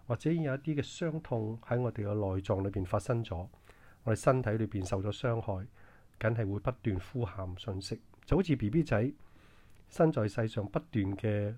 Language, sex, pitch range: Chinese, male, 100-120 Hz